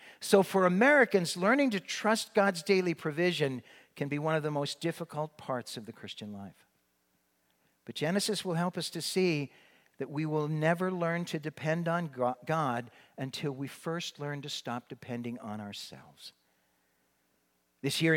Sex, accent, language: male, American, English